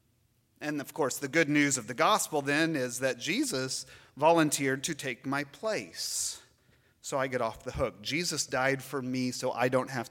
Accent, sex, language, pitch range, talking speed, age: American, male, English, 115-145 Hz, 190 wpm, 30-49